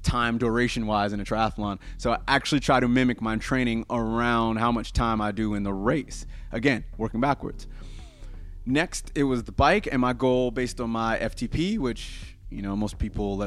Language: English